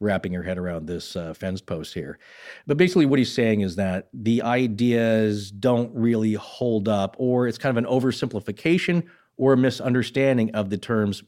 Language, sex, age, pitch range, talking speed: English, male, 40-59, 100-135 Hz, 180 wpm